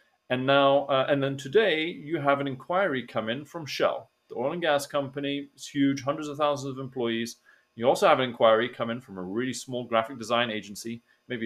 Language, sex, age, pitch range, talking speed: English, male, 30-49, 115-145 Hz, 215 wpm